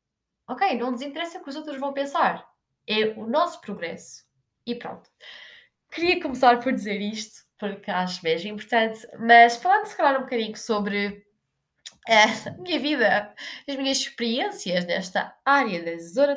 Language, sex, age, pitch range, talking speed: Portuguese, female, 20-39, 215-280 Hz, 150 wpm